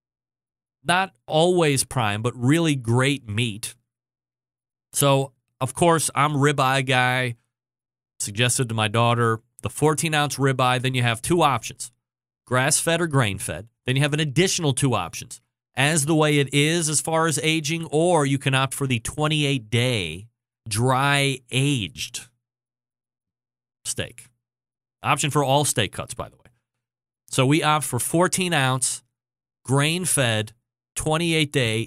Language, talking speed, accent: English, 130 wpm, American